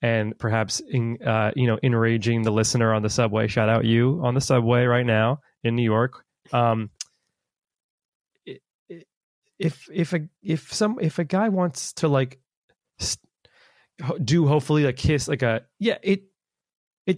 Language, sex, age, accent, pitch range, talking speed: English, male, 20-39, American, 120-170 Hz, 145 wpm